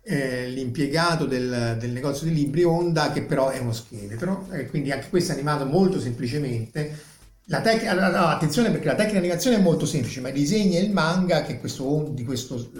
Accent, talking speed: native, 210 wpm